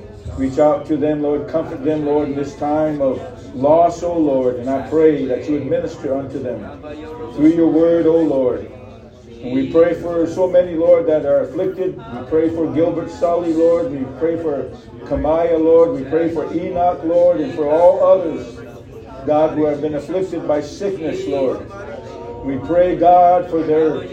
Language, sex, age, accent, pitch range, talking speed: English, male, 50-69, American, 150-185 Hz, 175 wpm